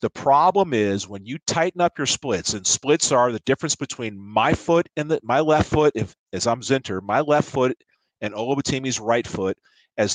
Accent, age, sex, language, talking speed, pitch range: American, 40-59, male, English, 200 wpm, 115-145 Hz